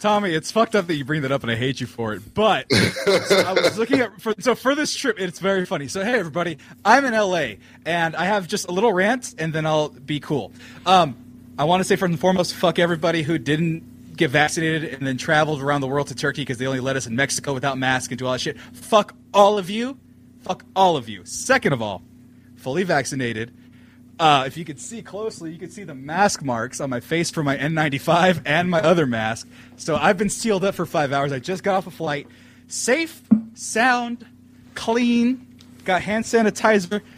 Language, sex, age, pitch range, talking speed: English, male, 20-39, 130-190 Hz, 225 wpm